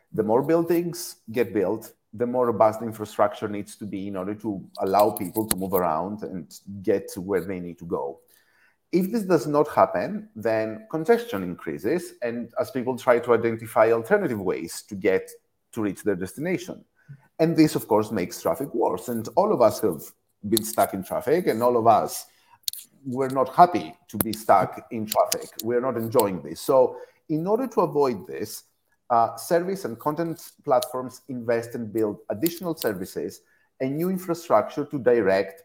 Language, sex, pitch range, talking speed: English, male, 110-160 Hz, 175 wpm